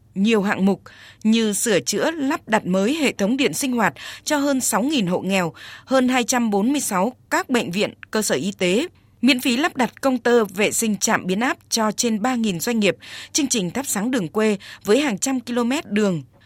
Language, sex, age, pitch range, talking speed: Vietnamese, female, 20-39, 195-255 Hz, 200 wpm